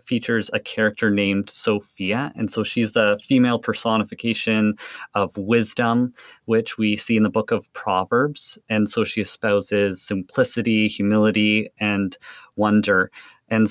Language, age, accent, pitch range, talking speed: English, 30-49, American, 105-115 Hz, 130 wpm